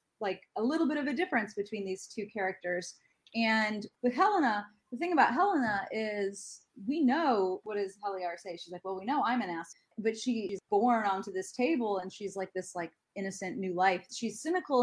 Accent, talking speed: American, 200 wpm